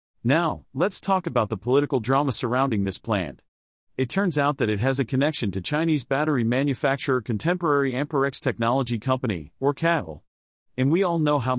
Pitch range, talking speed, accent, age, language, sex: 115-145 Hz, 170 wpm, American, 40-59, English, male